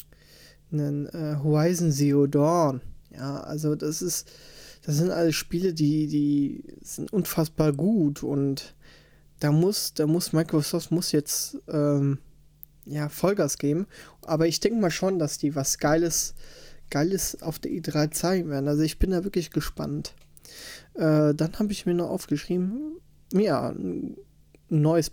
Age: 20-39